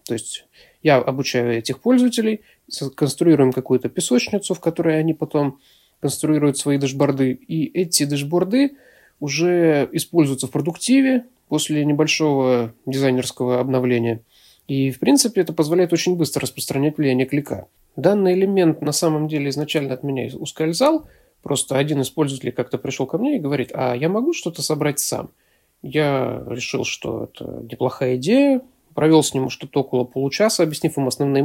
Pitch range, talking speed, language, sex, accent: 135-170 Hz, 145 wpm, Russian, male, native